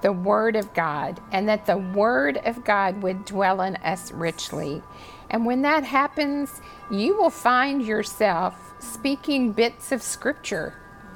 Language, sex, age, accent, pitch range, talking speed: English, female, 50-69, American, 205-265 Hz, 145 wpm